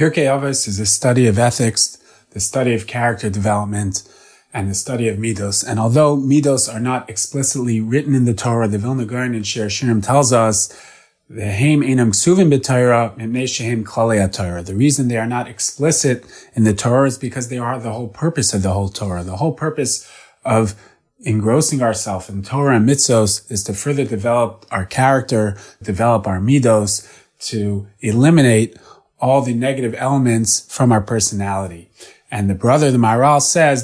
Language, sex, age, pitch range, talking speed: English, male, 30-49, 110-135 Hz, 160 wpm